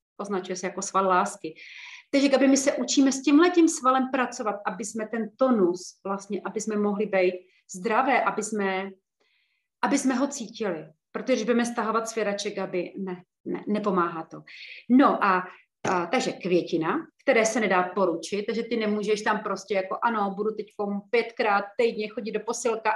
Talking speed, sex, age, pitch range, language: 160 wpm, female, 30-49, 180-225 Hz, Slovak